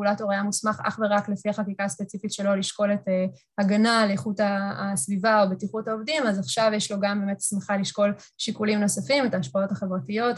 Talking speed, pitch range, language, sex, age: 180 wpm, 195-215 Hz, Hebrew, female, 20-39